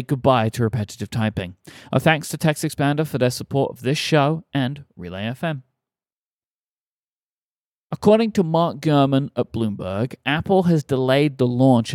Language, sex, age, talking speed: English, male, 30-49, 145 wpm